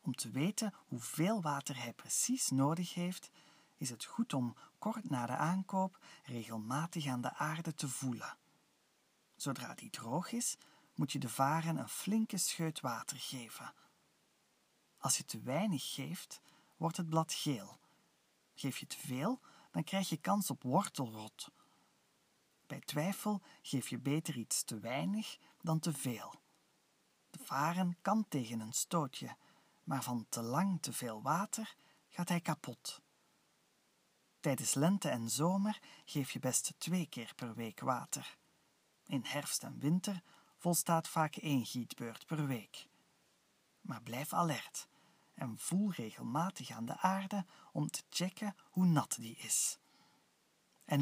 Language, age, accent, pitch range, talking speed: Dutch, 40-59, Dutch, 130-190 Hz, 140 wpm